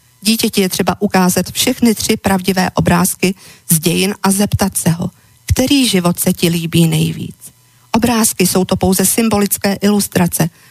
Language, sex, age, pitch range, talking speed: Slovak, female, 50-69, 175-205 Hz, 145 wpm